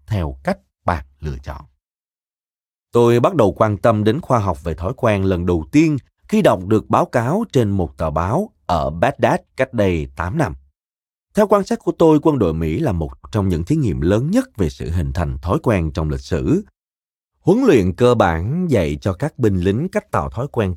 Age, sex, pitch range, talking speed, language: 30-49, male, 85-130 Hz, 210 wpm, Vietnamese